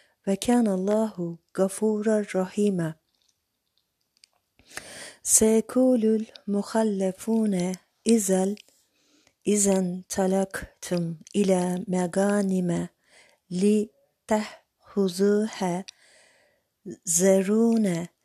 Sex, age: female, 40-59